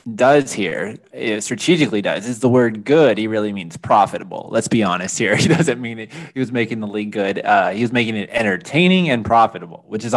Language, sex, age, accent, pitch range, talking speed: English, male, 20-39, American, 110-145 Hz, 210 wpm